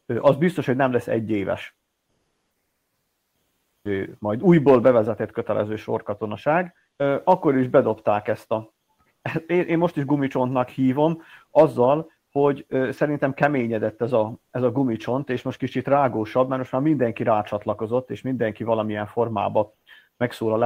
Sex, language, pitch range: male, Hungarian, 115-145 Hz